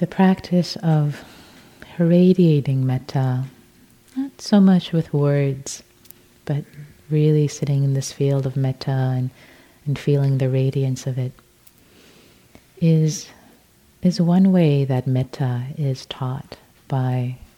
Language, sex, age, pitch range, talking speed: English, female, 30-49, 135-160 Hz, 115 wpm